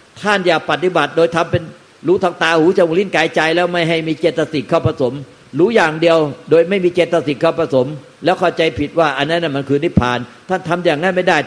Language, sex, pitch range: Thai, male, 130-170 Hz